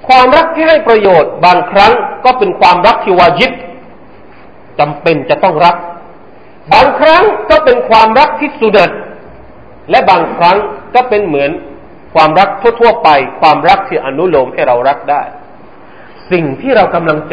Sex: male